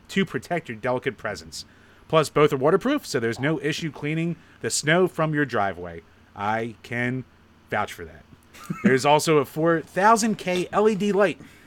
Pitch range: 125-170 Hz